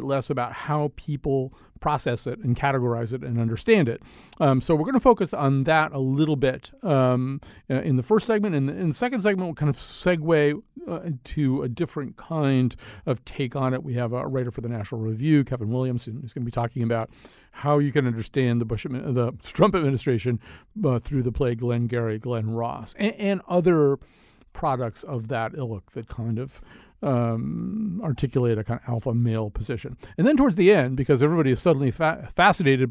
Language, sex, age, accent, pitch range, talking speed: English, male, 50-69, American, 120-160 Hz, 200 wpm